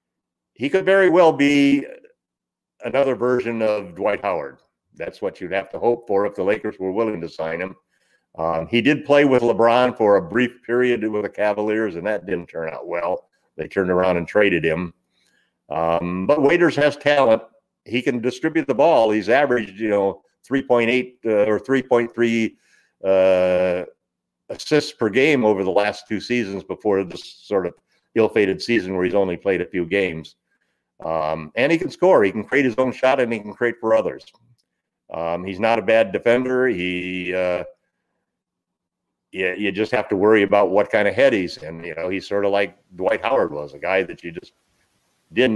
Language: English